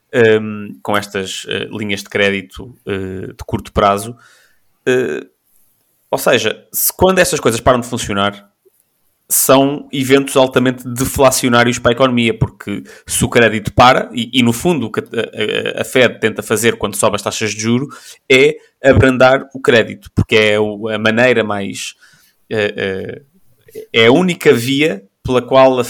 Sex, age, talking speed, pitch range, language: male, 20-39, 160 wpm, 105-130 Hz, Portuguese